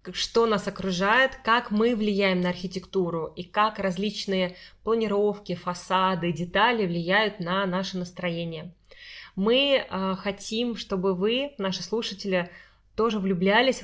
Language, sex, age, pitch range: Russian, female, 20-39, 180-215 Hz